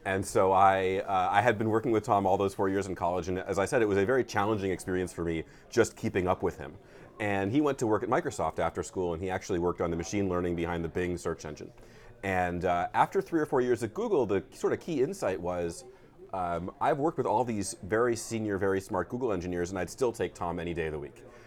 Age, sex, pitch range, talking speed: 30-49, male, 90-115 Hz, 255 wpm